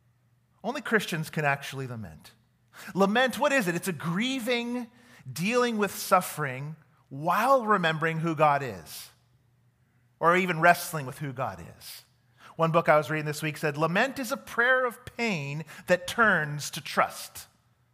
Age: 40-59